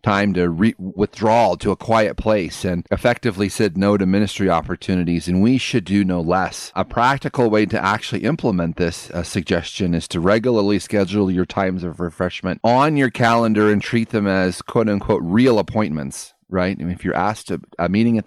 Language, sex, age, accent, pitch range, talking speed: English, male, 30-49, American, 90-110 Hz, 185 wpm